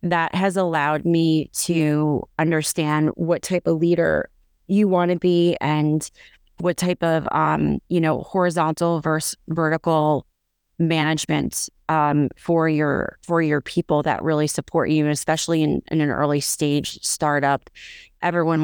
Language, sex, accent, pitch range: English, female, American, 145-165 Hz